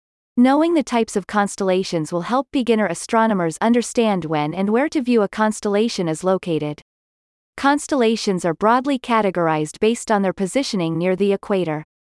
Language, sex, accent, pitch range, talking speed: English, female, American, 180-245 Hz, 150 wpm